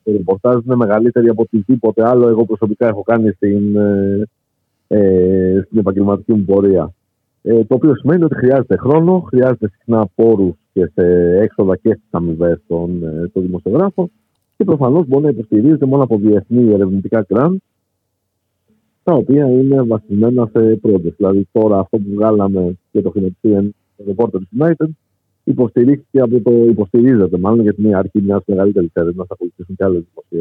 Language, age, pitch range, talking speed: Greek, 50-69, 95-130 Hz, 150 wpm